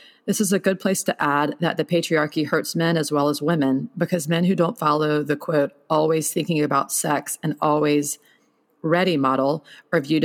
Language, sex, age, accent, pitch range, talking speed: English, female, 30-49, American, 145-175 Hz, 195 wpm